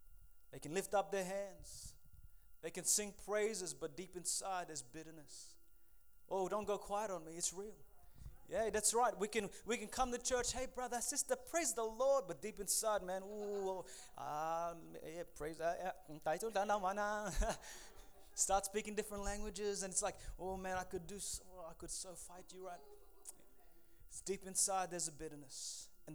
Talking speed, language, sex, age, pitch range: 175 wpm, English, male, 20-39, 160-205 Hz